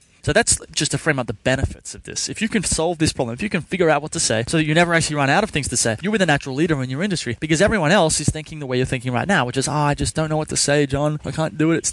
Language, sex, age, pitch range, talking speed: English, male, 20-39, 125-160 Hz, 345 wpm